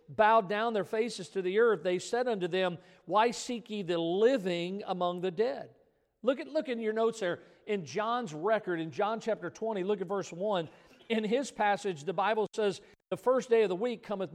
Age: 50-69